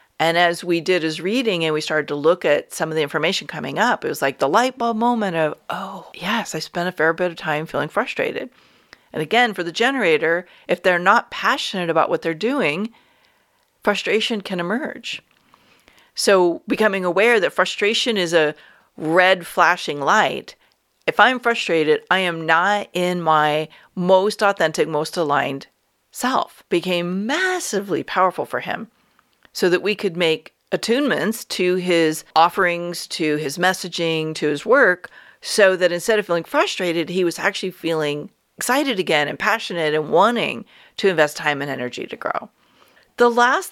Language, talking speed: English, 165 wpm